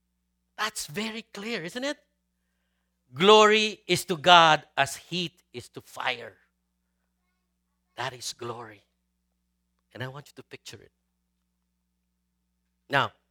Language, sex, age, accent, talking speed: English, male, 50-69, Filipino, 115 wpm